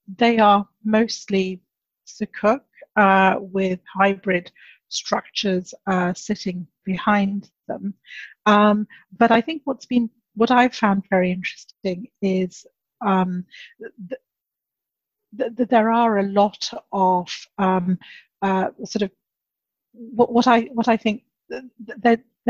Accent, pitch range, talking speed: British, 190-230 Hz, 115 wpm